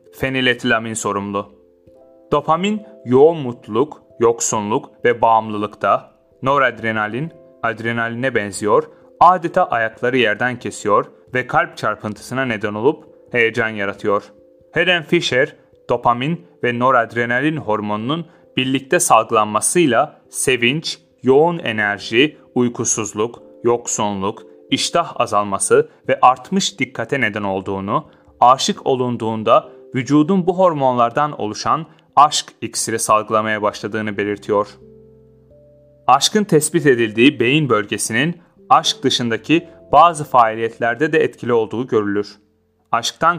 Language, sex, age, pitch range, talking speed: Turkish, male, 30-49, 110-150 Hz, 95 wpm